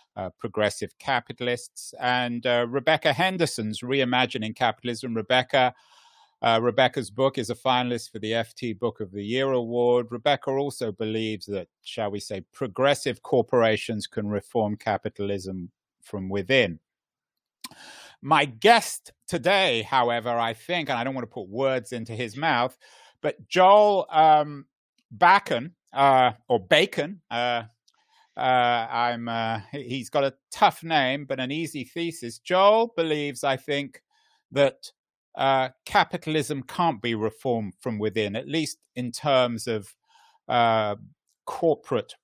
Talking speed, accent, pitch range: 130 wpm, British, 115-160 Hz